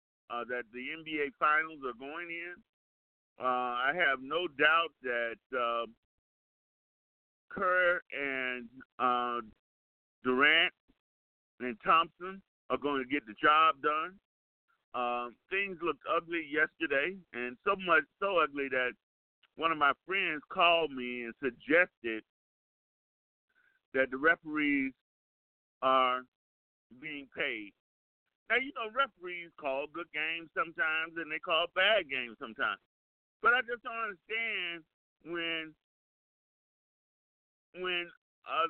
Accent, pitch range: American, 125-180 Hz